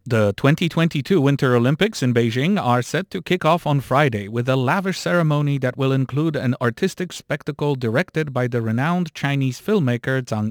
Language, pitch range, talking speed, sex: English, 120-160 Hz, 170 wpm, male